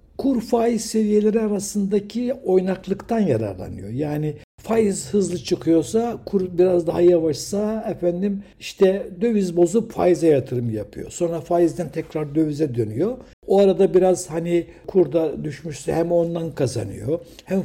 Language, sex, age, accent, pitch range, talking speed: Turkish, male, 60-79, native, 135-185 Hz, 120 wpm